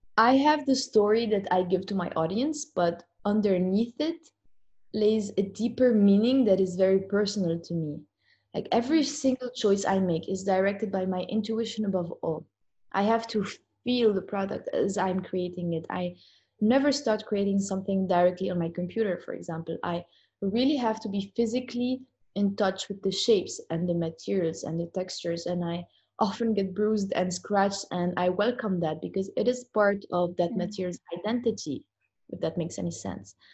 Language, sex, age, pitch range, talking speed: English, female, 20-39, 180-225 Hz, 175 wpm